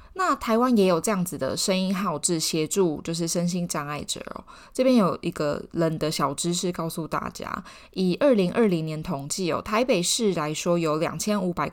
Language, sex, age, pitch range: Chinese, female, 20-39, 160-215 Hz